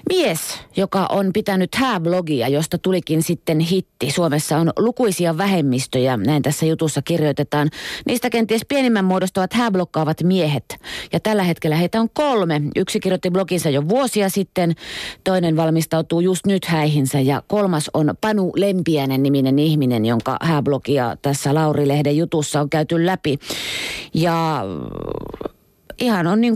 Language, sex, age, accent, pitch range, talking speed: Finnish, female, 30-49, native, 155-190 Hz, 135 wpm